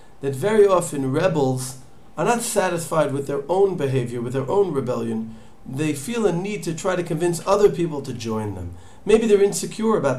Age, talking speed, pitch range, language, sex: 40-59, 190 wpm, 130-185 Hz, English, male